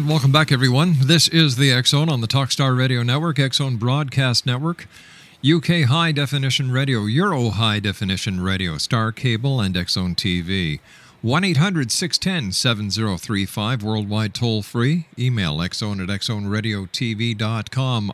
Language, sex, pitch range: English, male, 110-145 Hz